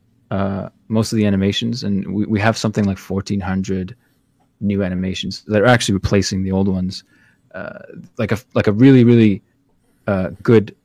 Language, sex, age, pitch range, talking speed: English, male, 20-39, 100-120 Hz, 165 wpm